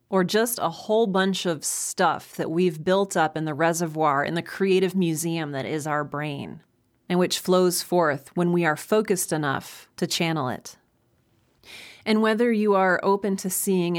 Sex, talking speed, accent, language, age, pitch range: female, 175 wpm, American, English, 30-49, 160-190 Hz